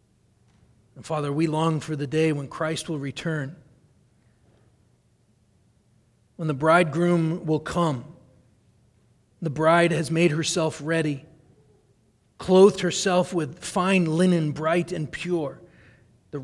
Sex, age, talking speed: male, 40-59, 110 wpm